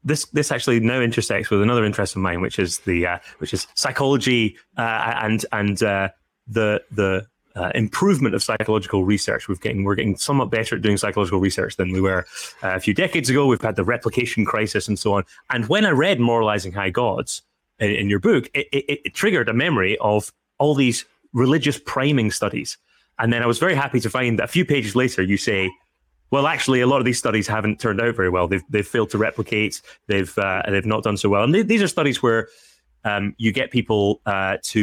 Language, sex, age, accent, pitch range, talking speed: English, male, 30-49, British, 100-125 Hz, 220 wpm